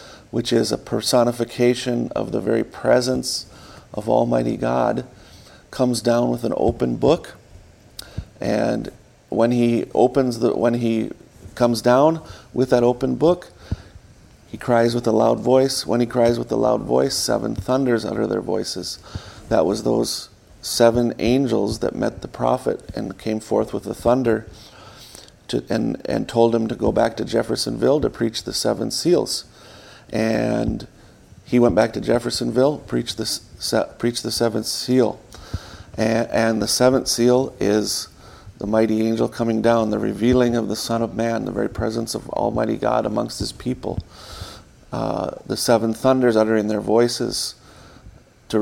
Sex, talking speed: male, 150 wpm